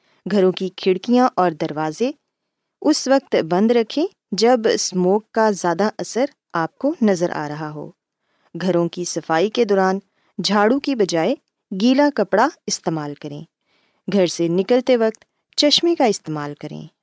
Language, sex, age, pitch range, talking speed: Urdu, female, 20-39, 170-225 Hz, 140 wpm